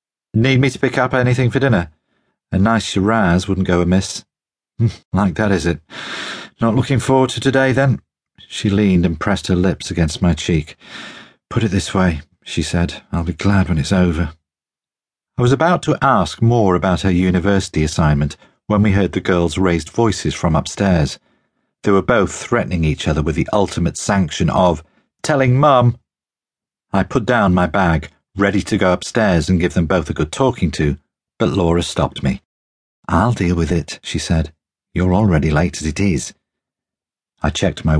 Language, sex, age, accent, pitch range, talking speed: English, male, 40-59, British, 85-105 Hz, 180 wpm